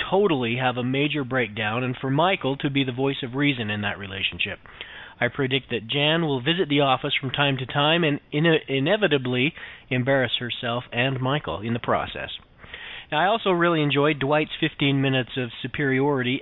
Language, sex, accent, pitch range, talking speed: English, male, American, 125-155 Hz, 170 wpm